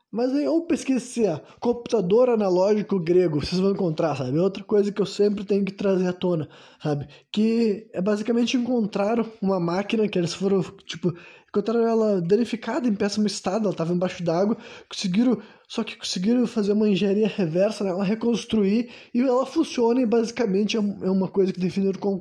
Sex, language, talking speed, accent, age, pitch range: male, Portuguese, 175 wpm, Brazilian, 20-39, 180-225 Hz